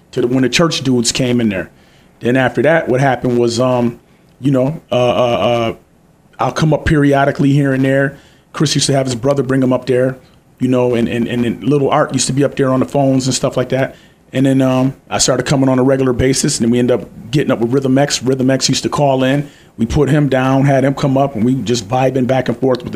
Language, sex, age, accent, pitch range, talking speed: English, male, 30-49, American, 120-135 Hz, 260 wpm